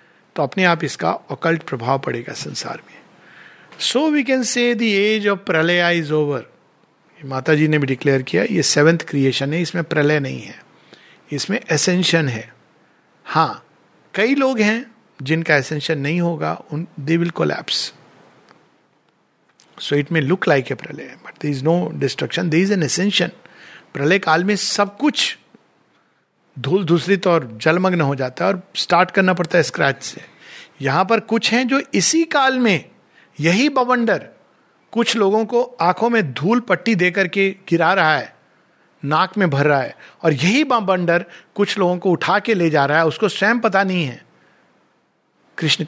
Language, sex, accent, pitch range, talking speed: Hindi, male, native, 150-205 Hz, 160 wpm